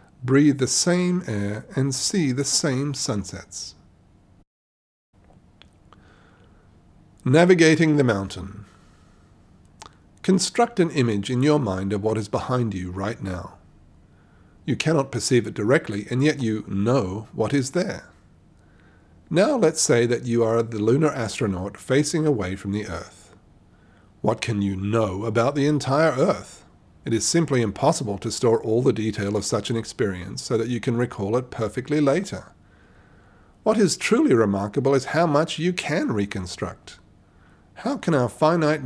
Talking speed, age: 145 wpm, 50-69